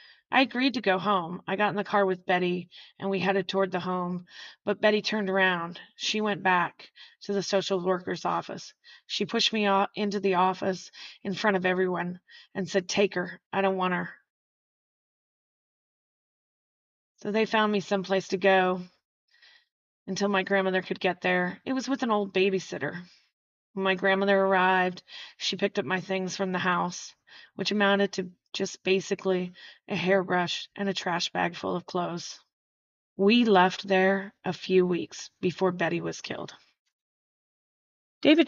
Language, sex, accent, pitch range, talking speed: English, female, American, 180-200 Hz, 160 wpm